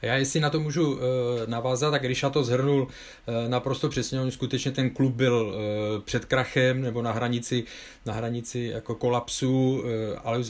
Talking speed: 160 wpm